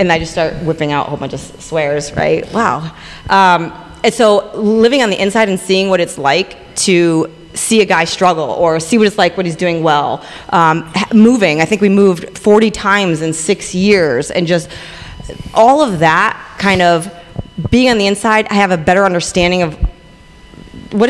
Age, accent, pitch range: 30-49, American, 160-195 Hz